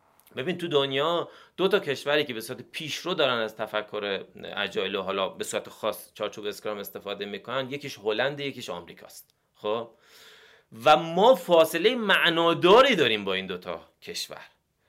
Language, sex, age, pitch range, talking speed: Persian, male, 30-49, 120-175 Hz, 155 wpm